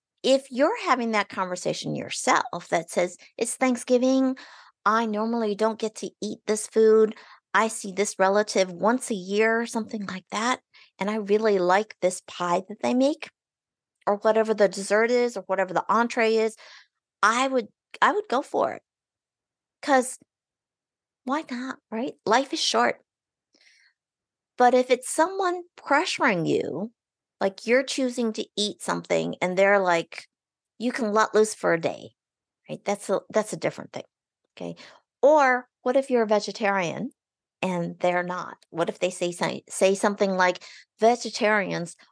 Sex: female